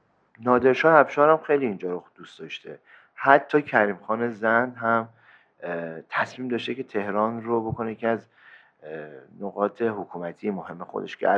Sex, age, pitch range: male, 40-59, 100-130 Hz